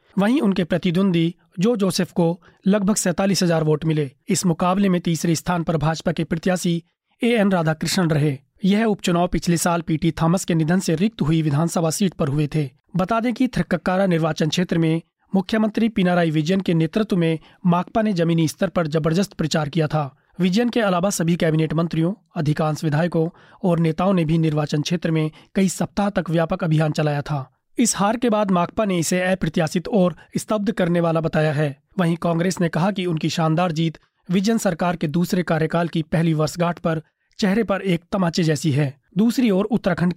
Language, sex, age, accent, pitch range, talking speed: Hindi, male, 30-49, native, 160-190 Hz, 185 wpm